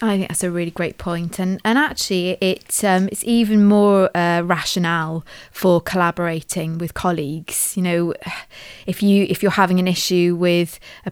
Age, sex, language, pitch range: 20-39, female, English, 175-195 Hz